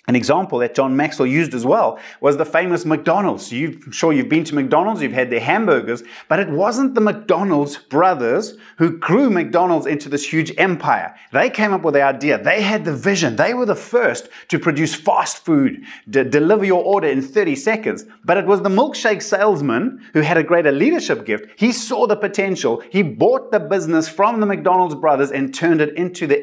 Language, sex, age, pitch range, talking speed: English, male, 30-49, 140-200 Hz, 205 wpm